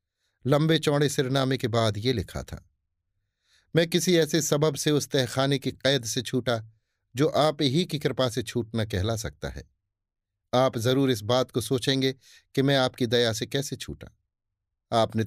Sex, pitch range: male, 100-140 Hz